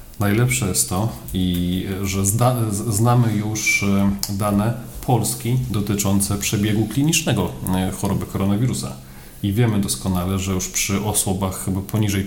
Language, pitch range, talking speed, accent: Polish, 95-110 Hz, 105 wpm, native